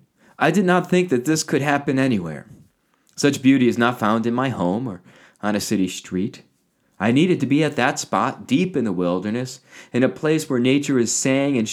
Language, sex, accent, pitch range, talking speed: English, male, American, 115-145 Hz, 210 wpm